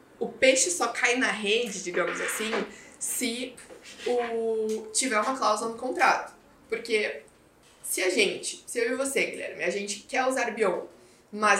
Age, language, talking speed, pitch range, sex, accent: 20-39, Portuguese, 155 wpm, 195-260 Hz, female, Brazilian